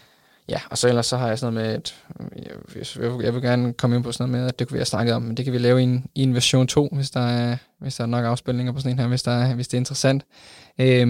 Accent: native